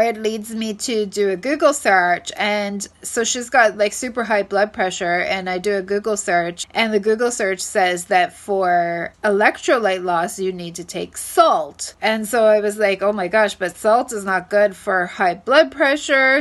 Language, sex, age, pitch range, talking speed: English, female, 30-49, 190-245 Hz, 200 wpm